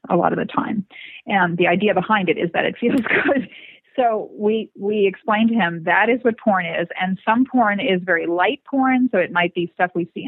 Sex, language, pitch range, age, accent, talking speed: female, English, 180-215 Hz, 30-49, American, 235 wpm